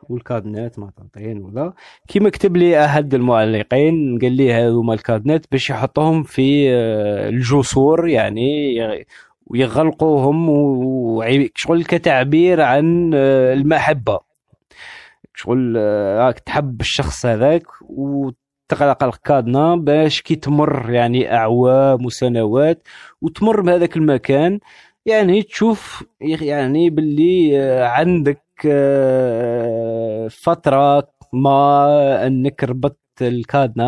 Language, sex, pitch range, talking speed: Arabic, male, 115-150 Hz, 80 wpm